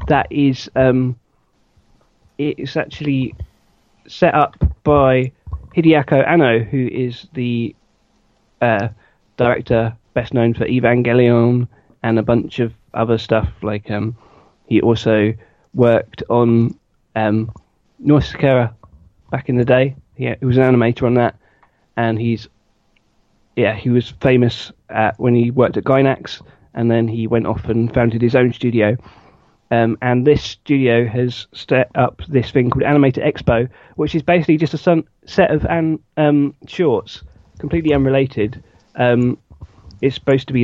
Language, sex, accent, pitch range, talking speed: English, male, British, 115-130 Hz, 145 wpm